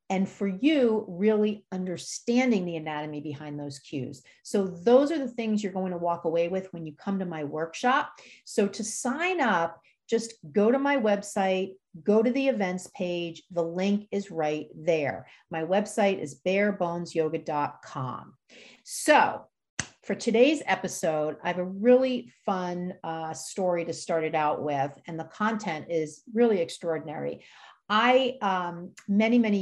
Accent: American